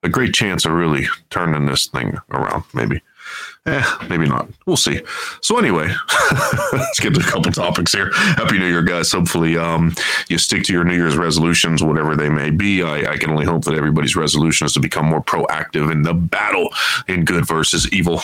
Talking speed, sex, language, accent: 200 wpm, male, English, American